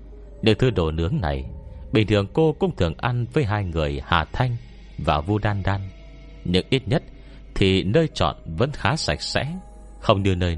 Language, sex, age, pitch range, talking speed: Vietnamese, male, 30-49, 80-120 Hz, 185 wpm